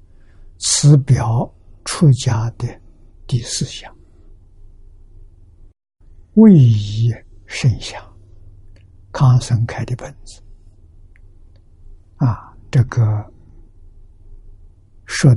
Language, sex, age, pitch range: Chinese, male, 60-79, 90-115 Hz